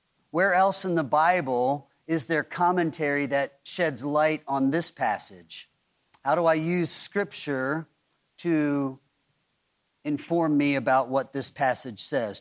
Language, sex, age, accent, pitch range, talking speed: English, male, 40-59, American, 130-160 Hz, 130 wpm